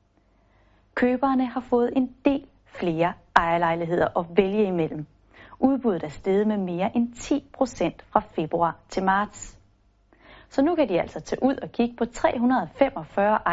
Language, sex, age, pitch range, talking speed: Danish, female, 30-49, 170-240 Hz, 140 wpm